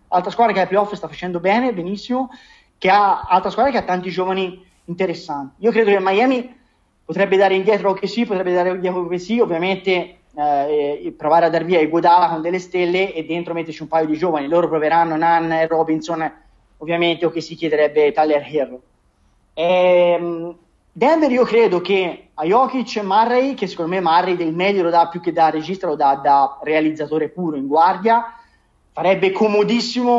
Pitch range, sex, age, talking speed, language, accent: 165-200 Hz, male, 20-39, 185 wpm, Italian, native